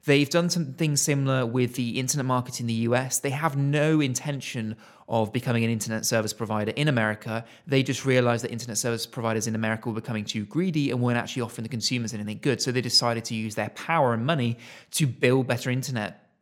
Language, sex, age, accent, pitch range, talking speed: English, male, 30-49, British, 110-130 Hz, 210 wpm